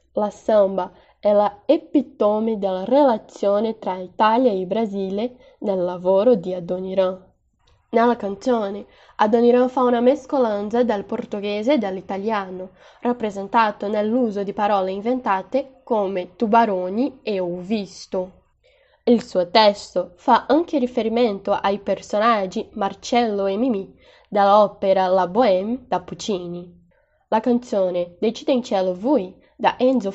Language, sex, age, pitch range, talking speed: Italian, female, 10-29, 195-240 Hz, 115 wpm